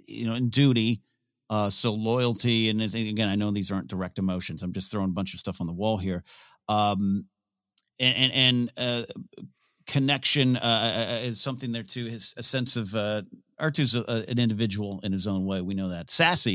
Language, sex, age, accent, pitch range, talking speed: English, male, 50-69, American, 95-120 Hz, 195 wpm